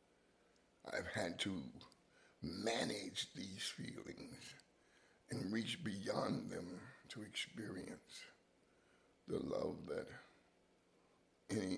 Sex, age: male, 60-79